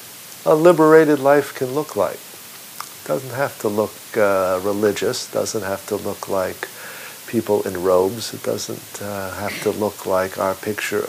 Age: 50-69